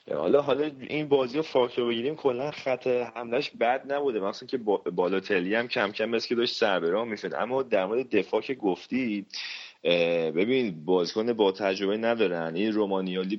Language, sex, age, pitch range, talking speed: Persian, male, 30-49, 90-115 Hz, 170 wpm